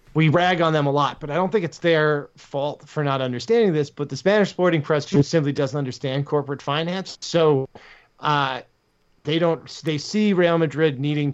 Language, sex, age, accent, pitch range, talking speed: English, male, 20-39, American, 130-155 Hz, 195 wpm